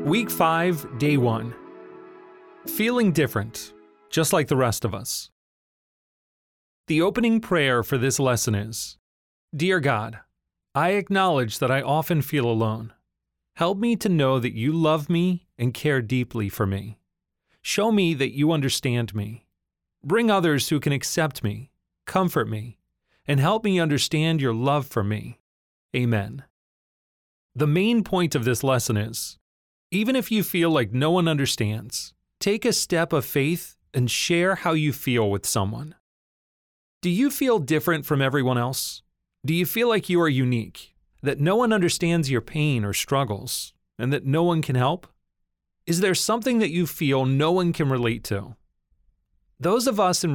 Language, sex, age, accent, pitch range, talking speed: English, male, 30-49, American, 115-175 Hz, 160 wpm